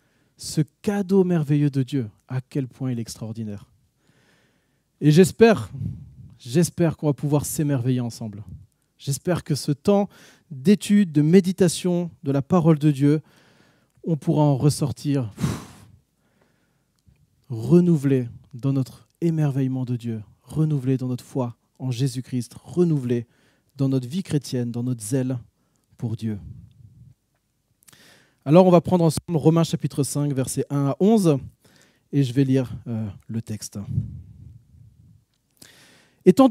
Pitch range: 125-175 Hz